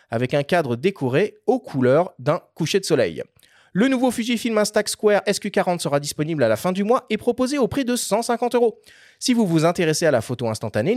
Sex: male